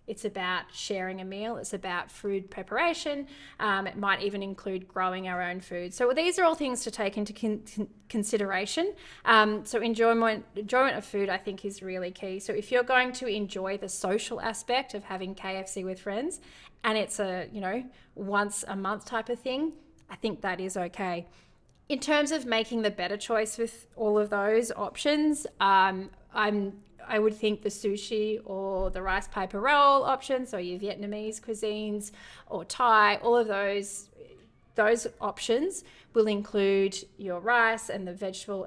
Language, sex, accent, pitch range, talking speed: English, female, Australian, 195-235 Hz, 175 wpm